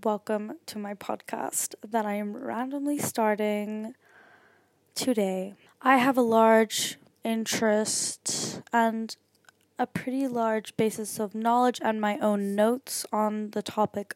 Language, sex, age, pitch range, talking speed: English, female, 10-29, 200-240 Hz, 125 wpm